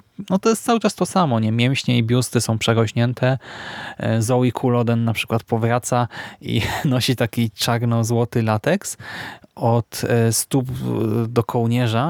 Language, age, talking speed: Polish, 20-39, 135 wpm